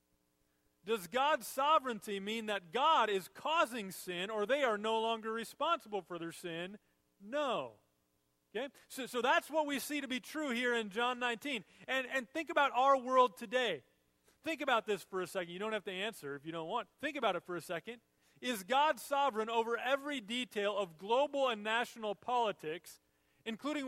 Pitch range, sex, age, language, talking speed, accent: 185-260 Hz, male, 40-59, English, 185 wpm, American